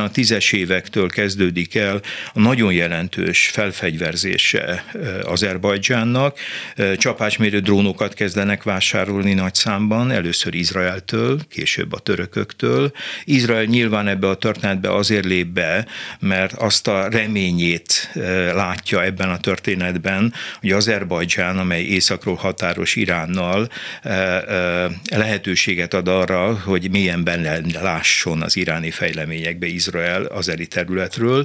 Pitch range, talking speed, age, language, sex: 90-110 Hz, 105 wpm, 60-79, Hungarian, male